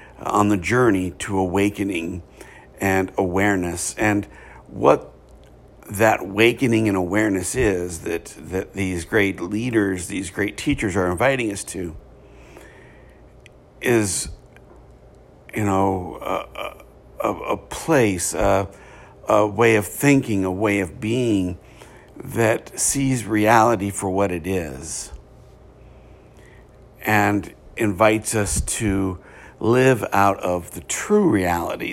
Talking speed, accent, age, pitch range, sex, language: 105 wpm, American, 60-79, 95-115 Hz, male, English